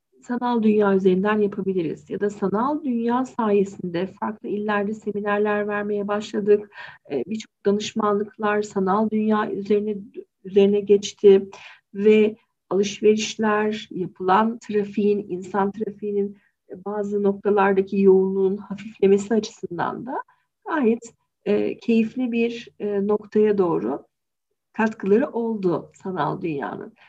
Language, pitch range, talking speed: Turkish, 195-225 Hz, 95 wpm